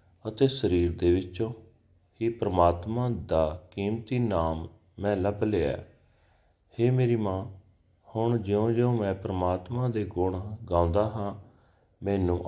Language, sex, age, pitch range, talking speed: Punjabi, male, 40-59, 90-110 Hz, 115 wpm